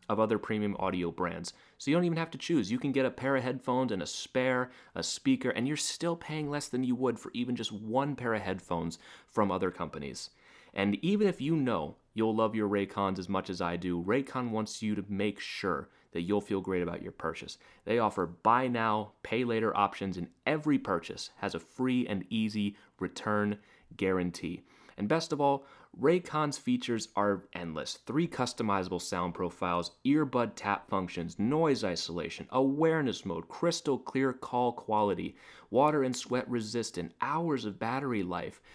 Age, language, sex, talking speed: 30-49, English, male, 180 wpm